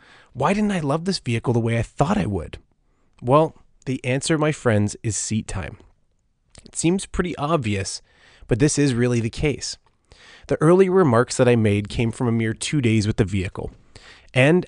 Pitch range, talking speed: 105-130 Hz, 190 wpm